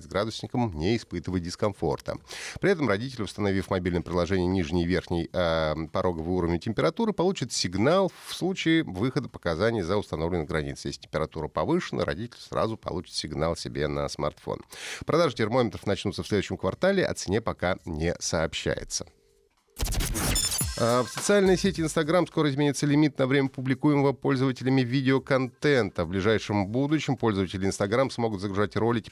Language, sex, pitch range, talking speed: Russian, male, 90-135 Hz, 140 wpm